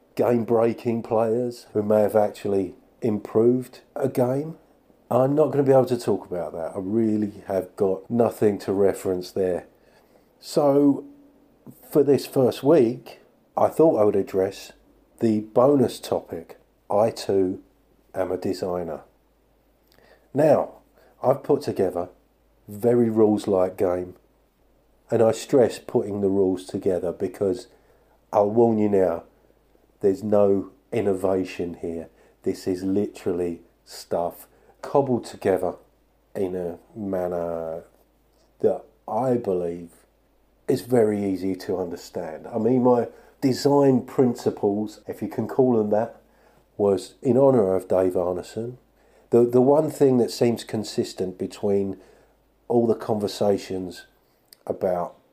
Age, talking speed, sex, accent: 50-69, 125 wpm, male, British